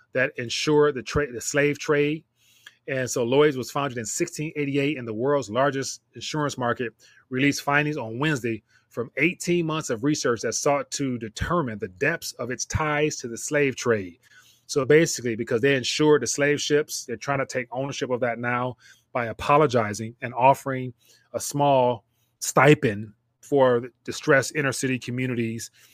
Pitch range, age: 120-145 Hz, 30-49